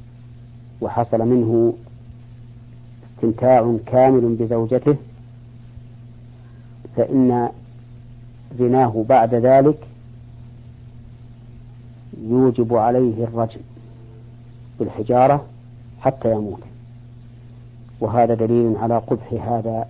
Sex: female